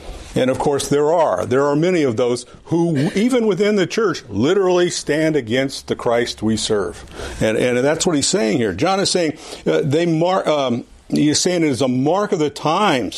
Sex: male